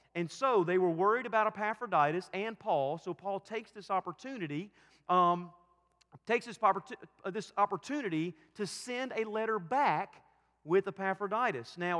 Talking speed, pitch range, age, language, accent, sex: 140 wpm, 165-215 Hz, 40-59, English, American, male